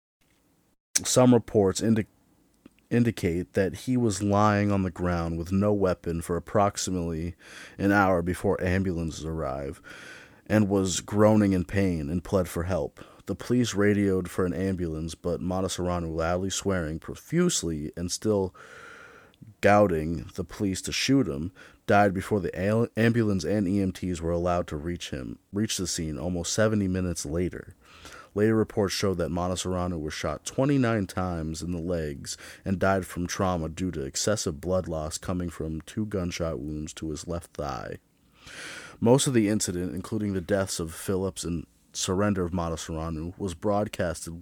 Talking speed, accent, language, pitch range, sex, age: 155 wpm, American, English, 85-100 Hz, male, 30-49